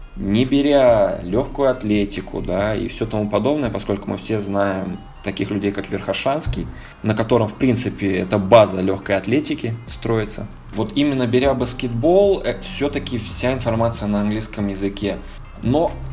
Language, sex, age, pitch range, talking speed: Russian, male, 20-39, 95-120 Hz, 140 wpm